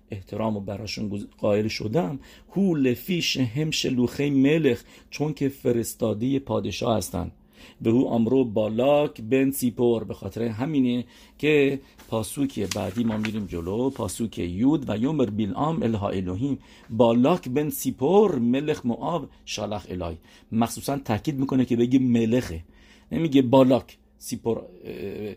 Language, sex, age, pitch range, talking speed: English, male, 50-69, 105-135 Hz, 125 wpm